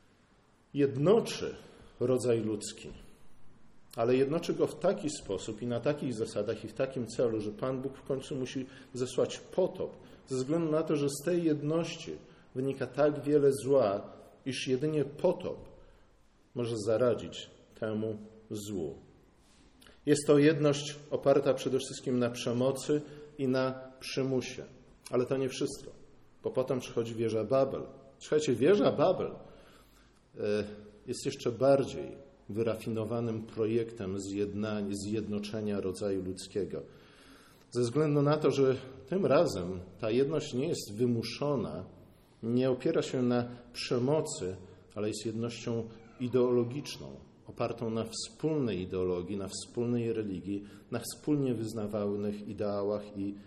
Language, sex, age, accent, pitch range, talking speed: Polish, male, 50-69, native, 105-135 Hz, 120 wpm